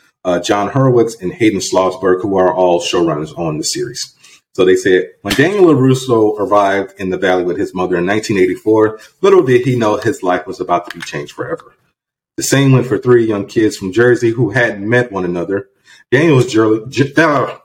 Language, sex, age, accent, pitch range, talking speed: English, male, 30-49, American, 95-125 Hz, 190 wpm